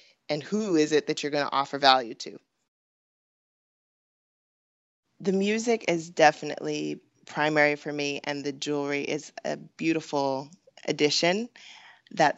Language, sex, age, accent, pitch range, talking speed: English, female, 20-39, American, 140-160 Hz, 125 wpm